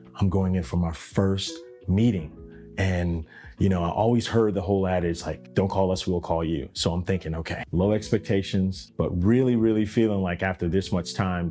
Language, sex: English, male